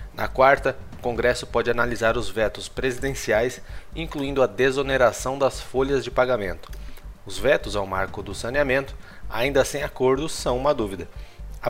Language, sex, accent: Portuguese, male, Brazilian